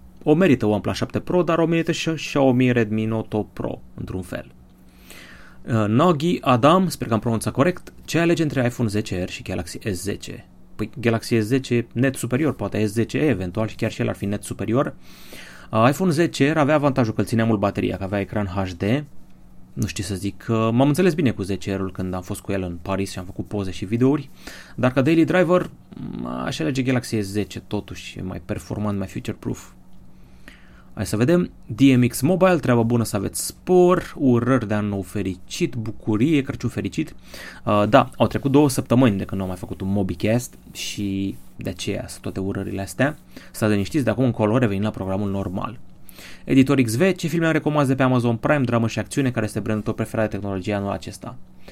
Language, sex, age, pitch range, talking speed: Romanian, male, 30-49, 100-135 Hz, 195 wpm